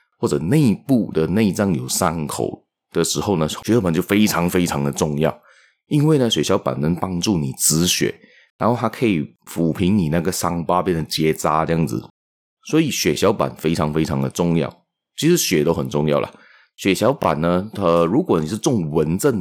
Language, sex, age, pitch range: Chinese, male, 30-49, 75-100 Hz